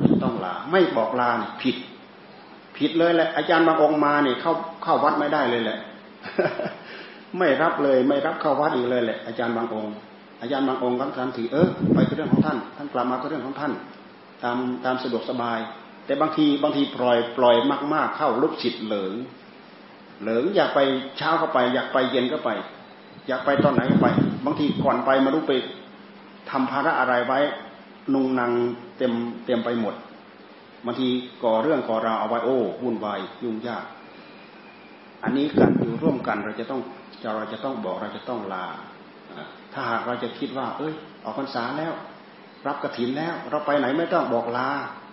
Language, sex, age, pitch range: Thai, male, 30-49, 115-145 Hz